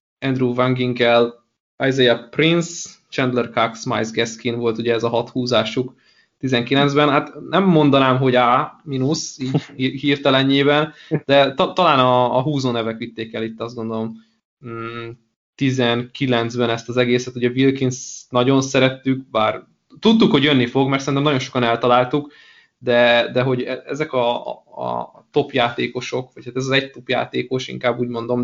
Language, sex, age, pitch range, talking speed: Hungarian, male, 20-39, 120-135 Hz, 145 wpm